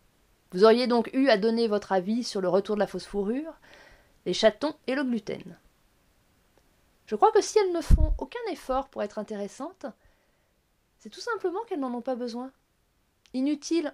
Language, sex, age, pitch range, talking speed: French, female, 30-49, 205-265 Hz, 175 wpm